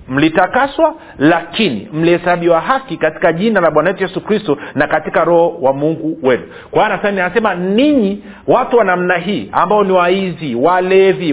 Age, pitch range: 50-69, 160-205 Hz